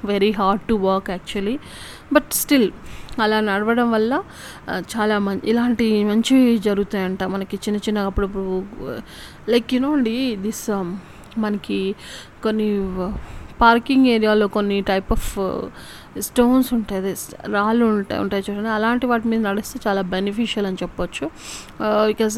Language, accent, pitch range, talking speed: Telugu, native, 200-235 Hz, 120 wpm